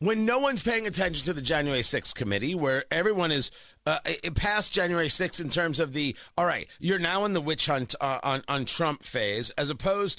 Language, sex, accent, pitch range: English, male, American, 130-200 Hz